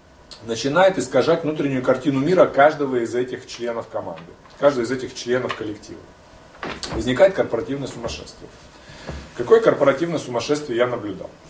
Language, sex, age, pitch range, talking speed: Russian, male, 20-39, 115-155 Hz, 120 wpm